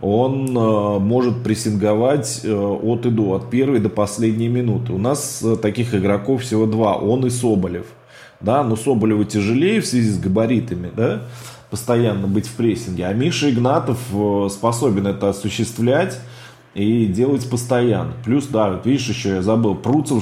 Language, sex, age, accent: Russian, male, 20-39, native